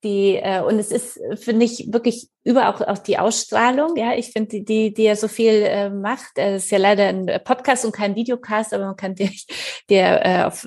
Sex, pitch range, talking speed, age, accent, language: female, 195-220 Hz, 225 wpm, 30-49, German, German